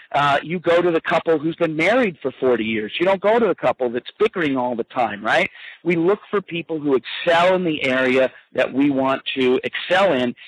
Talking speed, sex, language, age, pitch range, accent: 225 wpm, male, English, 50-69, 135-190 Hz, American